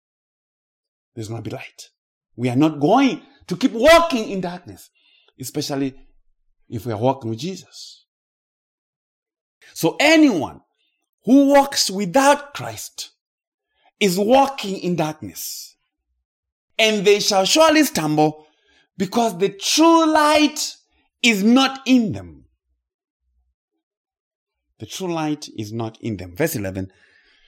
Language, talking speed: English, 110 wpm